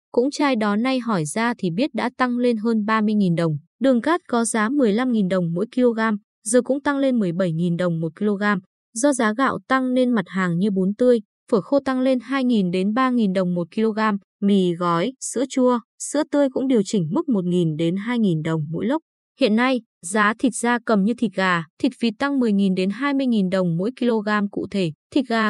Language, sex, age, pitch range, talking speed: Vietnamese, female, 20-39, 195-255 Hz, 205 wpm